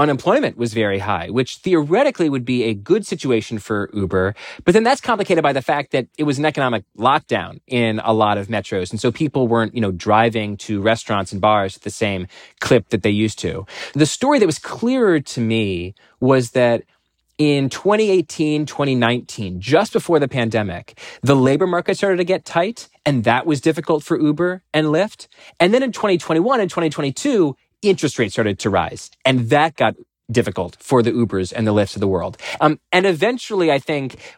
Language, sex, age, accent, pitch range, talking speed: English, male, 30-49, American, 110-155 Hz, 190 wpm